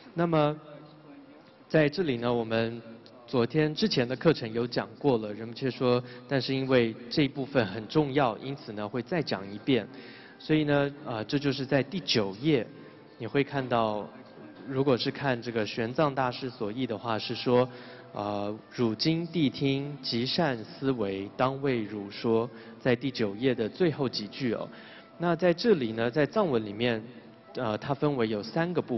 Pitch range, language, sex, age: 115-145 Hz, English, male, 20-39